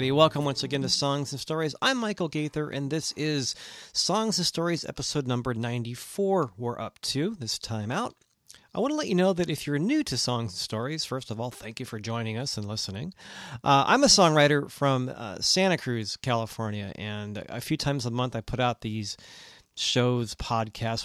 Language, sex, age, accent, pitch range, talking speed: English, male, 40-59, American, 115-145 Hz, 200 wpm